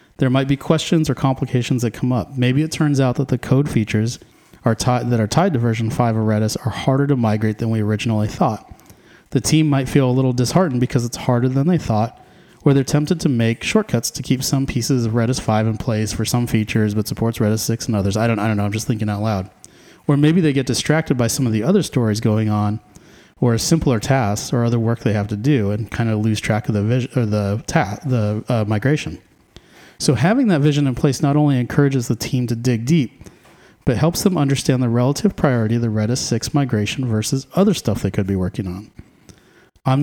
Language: English